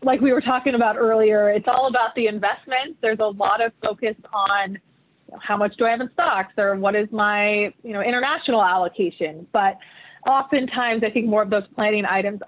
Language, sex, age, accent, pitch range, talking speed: English, female, 20-39, American, 200-240 Hz, 205 wpm